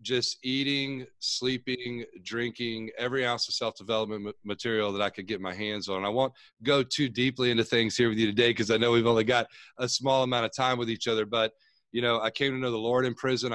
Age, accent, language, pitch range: 30-49, American, English, 105-125 Hz